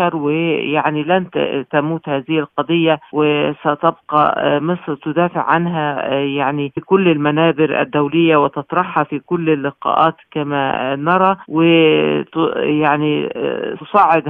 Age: 50-69